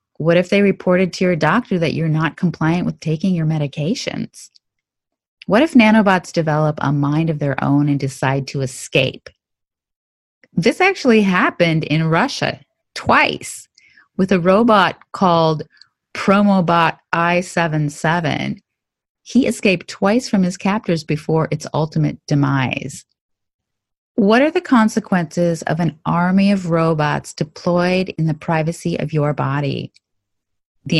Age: 30-49